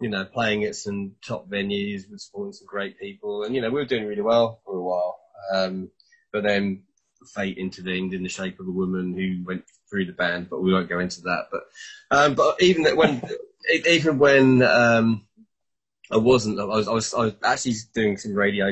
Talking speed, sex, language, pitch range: 210 wpm, male, English, 95-135 Hz